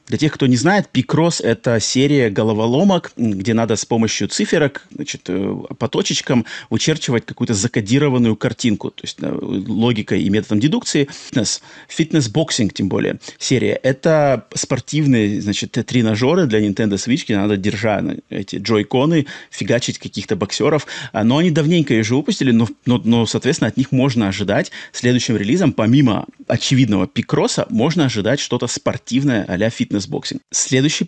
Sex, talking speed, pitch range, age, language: male, 140 wpm, 105-135 Hz, 30-49, Russian